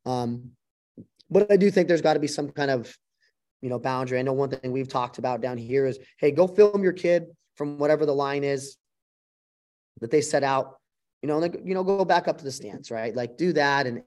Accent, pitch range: American, 115-135 Hz